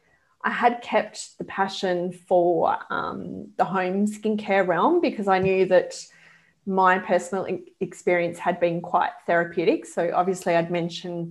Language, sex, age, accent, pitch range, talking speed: English, female, 20-39, Australian, 175-210 Hz, 140 wpm